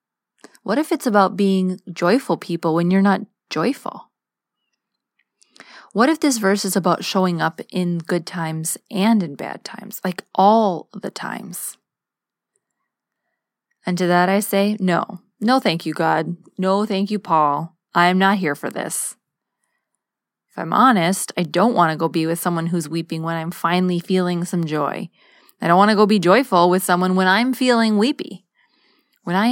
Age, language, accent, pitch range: 20-39, English, American, 175-215 Hz